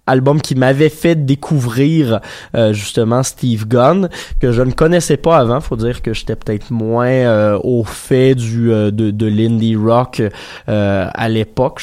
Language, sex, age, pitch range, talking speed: French, male, 20-39, 115-155 Hz, 170 wpm